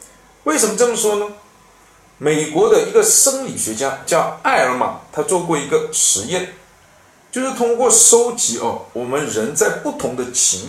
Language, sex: Chinese, male